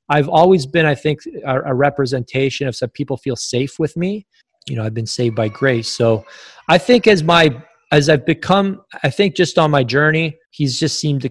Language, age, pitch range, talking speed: English, 20-39, 125-165 Hz, 210 wpm